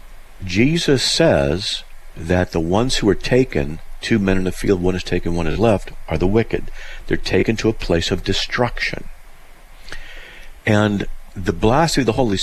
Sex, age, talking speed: male, 50-69, 170 wpm